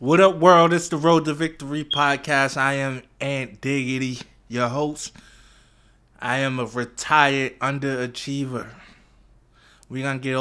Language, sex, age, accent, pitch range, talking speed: English, male, 20-39, American, 125-160 Hz, 135 wpm